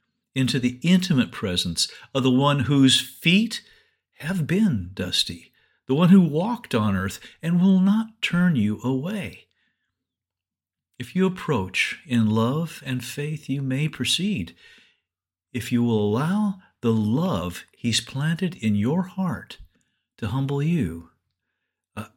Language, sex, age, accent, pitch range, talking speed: English, male, 50-69, American, 110-160 Hz, 135 wpm